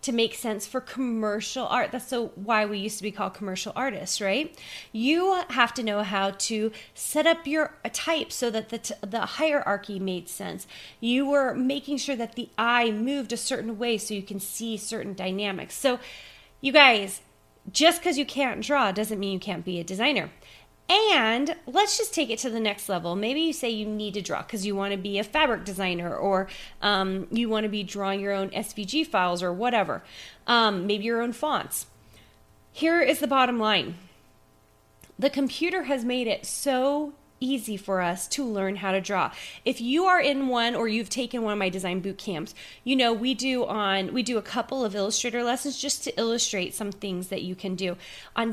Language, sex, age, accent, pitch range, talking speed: English, female, 30-49, American, 200-270 Hz, 200 wpm